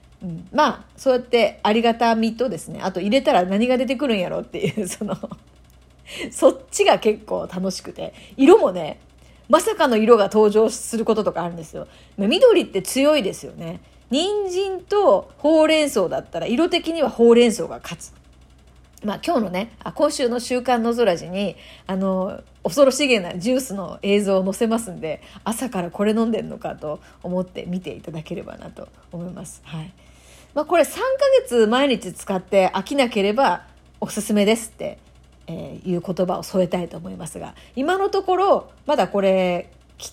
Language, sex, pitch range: Japanese, female, 180-255 Hz